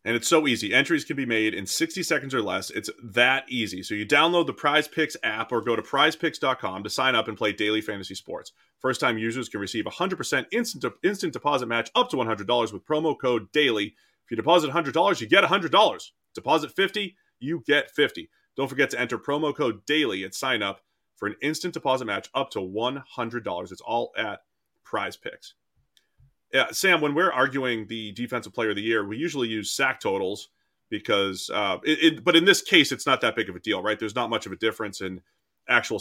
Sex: male